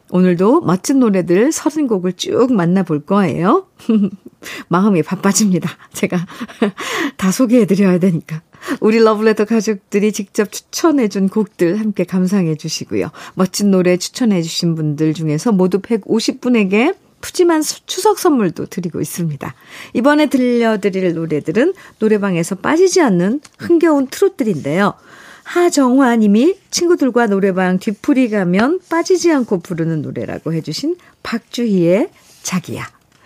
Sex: female